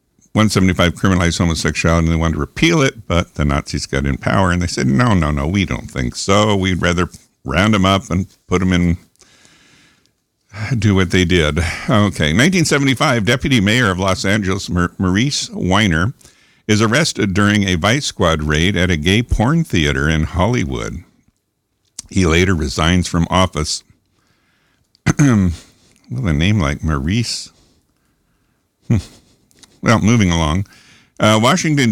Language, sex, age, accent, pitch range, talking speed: English, male, 60-79, American, 85-115 Hz, 145 wpm